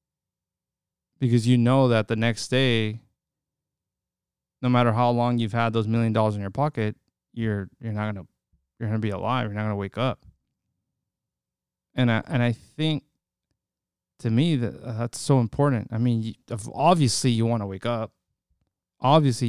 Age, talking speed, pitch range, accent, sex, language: 20-39, 170 wpm, 105-125 Hz, American, male, English